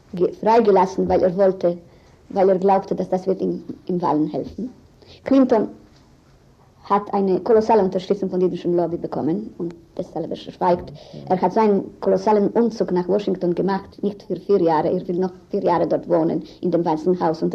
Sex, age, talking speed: male, 50-69, 175 wpm